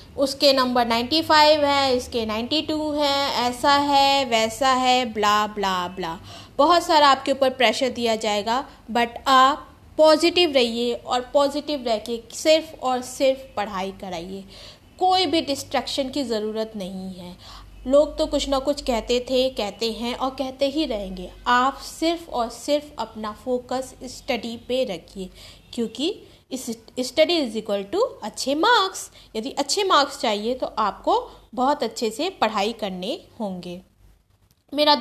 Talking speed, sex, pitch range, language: 145 wpm, female, 225-290 Hz, Hindi